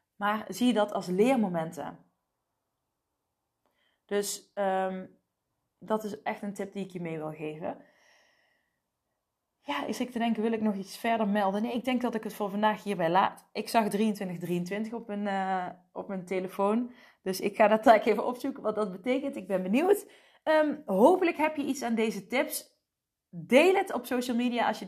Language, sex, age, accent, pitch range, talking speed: Dutch, female, 20-39, Dutch, 190-250 Hz, 175 wpm